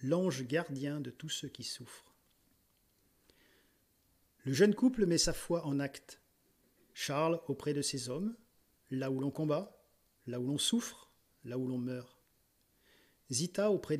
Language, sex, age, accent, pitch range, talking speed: French, male, 40-59, French, 135-175 Hz, 145 wpm